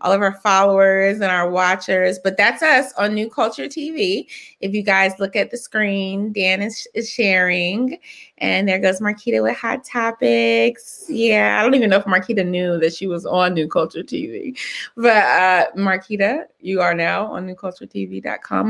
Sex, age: female, 20-39